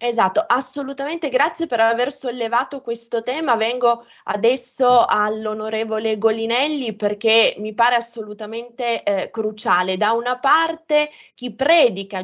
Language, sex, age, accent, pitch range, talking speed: Italian, female, 20-39, native, 195-235 Hz, 115 wpm